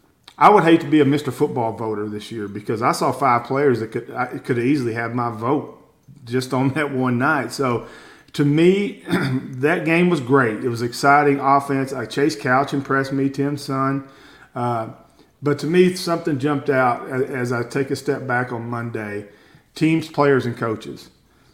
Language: English